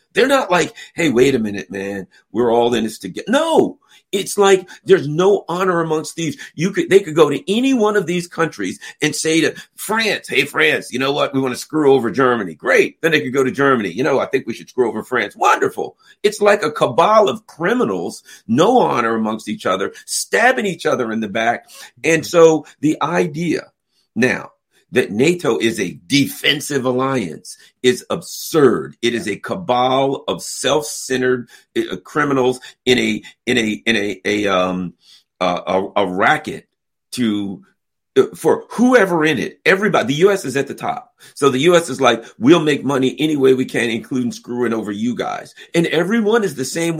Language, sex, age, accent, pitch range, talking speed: English, male, 50-69, American, 120-180 Hz, 185 wpm